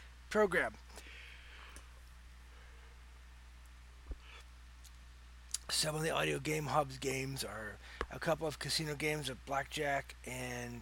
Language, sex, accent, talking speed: English, male, American, 95 wpm